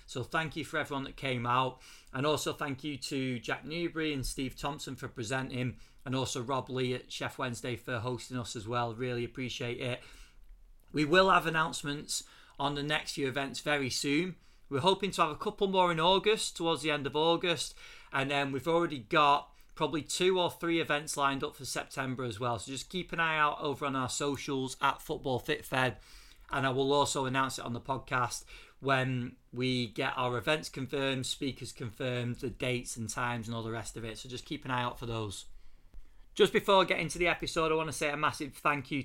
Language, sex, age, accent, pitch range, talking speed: English, male, 40-59, British, 125-155 Hz, 215 wpm